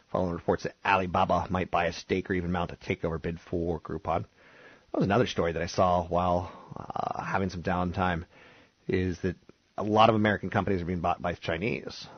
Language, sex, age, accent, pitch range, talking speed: English, male, 30-49, American, 85-95 Hz, 190 wpm